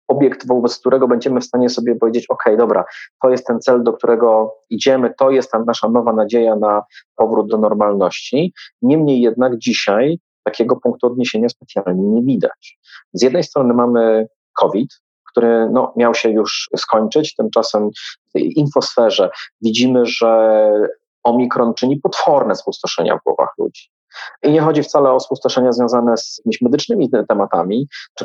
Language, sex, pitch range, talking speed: Polish, male, 115-135 Hz, 150 wpm